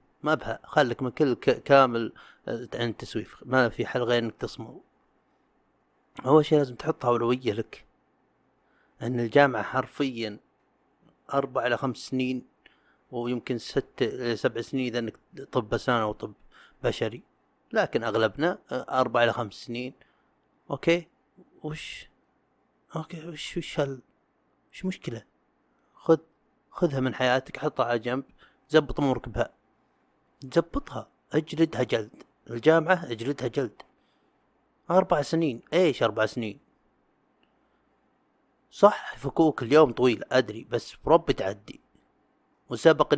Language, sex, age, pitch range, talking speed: Arabic, male, 30-49, 120-155 Hz, 115 wpm